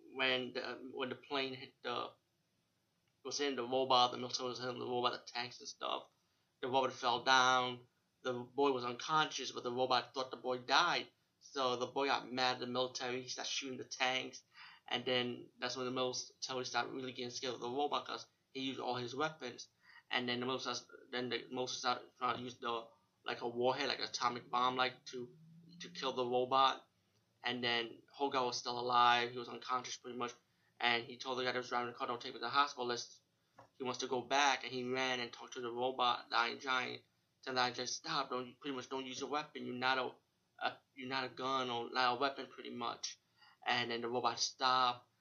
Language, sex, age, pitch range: English, male, 20-39, 120-135 Hz